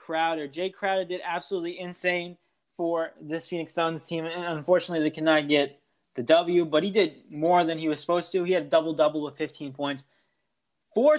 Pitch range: 160-190 Hz